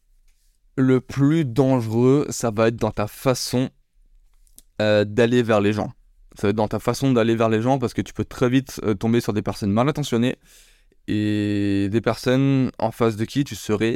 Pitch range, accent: 105-130 Hz, French